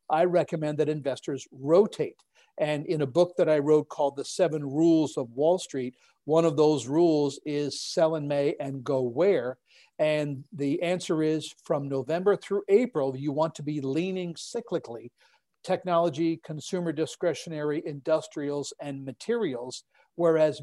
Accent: American